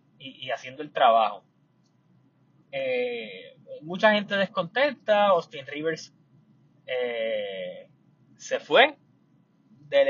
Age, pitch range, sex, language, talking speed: 20-39, 145-235 Hz, male, Spanish, 85 wpm